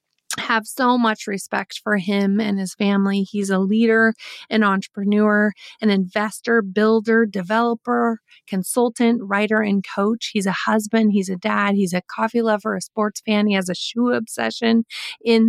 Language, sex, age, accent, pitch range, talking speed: English, female, 30-49, American, 195-220 Hz, 160 wpm